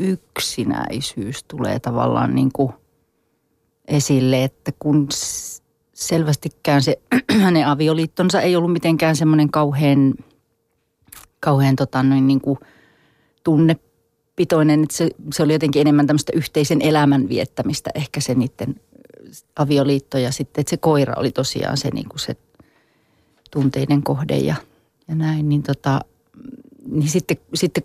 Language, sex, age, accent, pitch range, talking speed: Finnish, female, 40-59, native, 135-160 Hz, 125 wpm